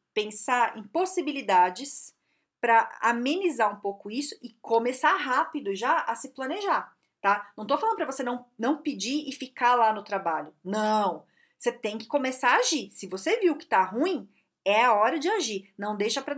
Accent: Brazilian